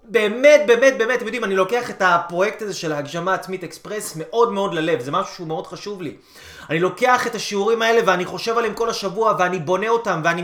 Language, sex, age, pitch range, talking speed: Hebrew, male, 30-49, 200-250 Hz, 205 wpm